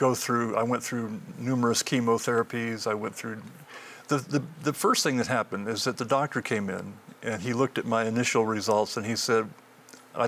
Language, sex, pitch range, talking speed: English, male, 110-125 Hz, 200 wpm